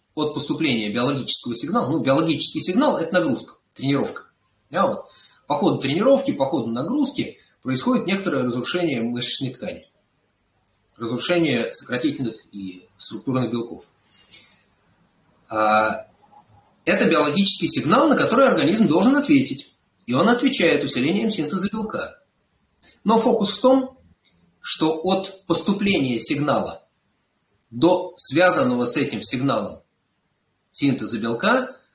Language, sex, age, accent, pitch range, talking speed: Russian, male, 30-49, native, 115-190 Hz, 105 wpm